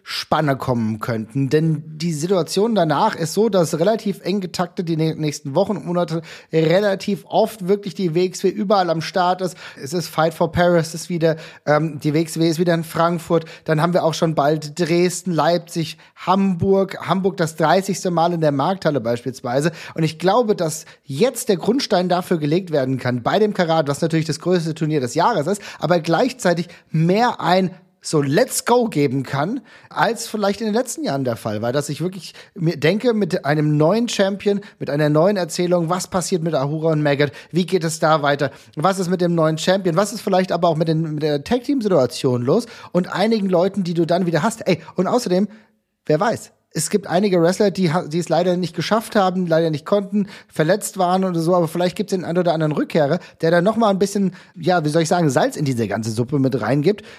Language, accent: German, German